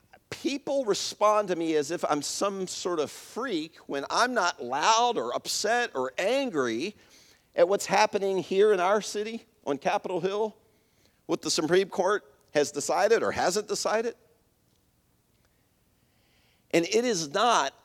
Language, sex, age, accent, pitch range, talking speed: English, male, 50-69, American, 150-220 Hz, 140 wpm